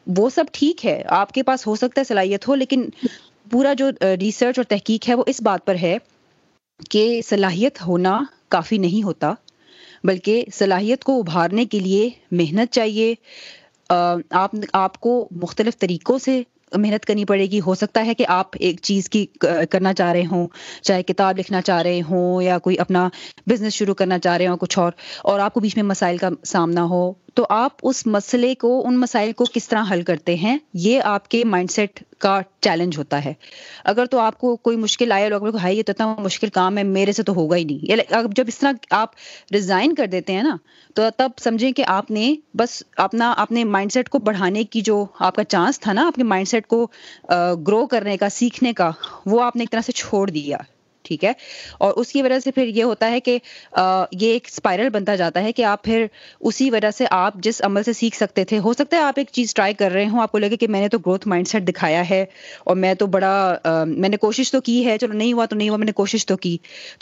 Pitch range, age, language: 185-240 Hz, 20-39, Urdu